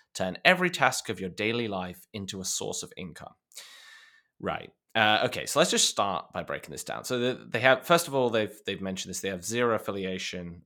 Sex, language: male, English